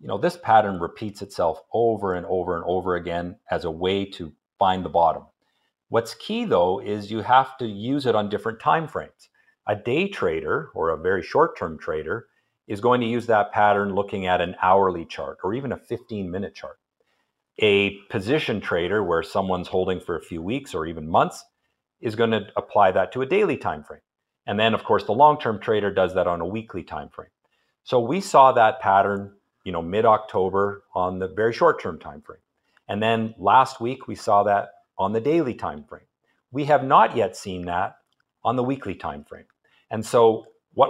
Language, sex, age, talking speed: English, male, 50-69, 195 wpm